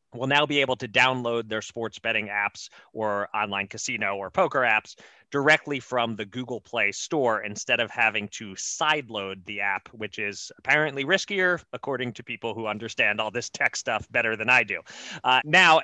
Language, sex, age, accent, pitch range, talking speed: English, male, 30-49, American, 105-145 Hz, 180 wpm